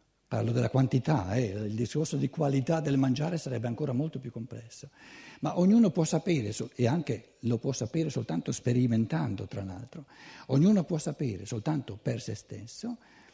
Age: 60-79